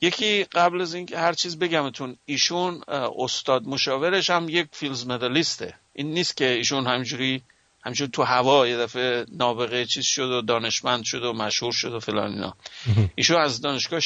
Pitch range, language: 120-155 Hz, English